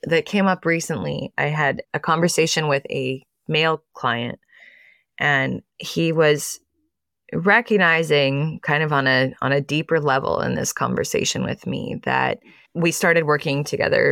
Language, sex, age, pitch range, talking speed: English, female, 20-39, 135-160 Hz, 145 wpm